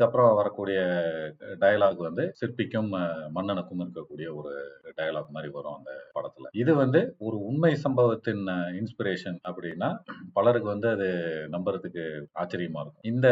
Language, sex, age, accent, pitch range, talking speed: Tamil, male, 40-59, native, 90-125 Hz, 55 wpm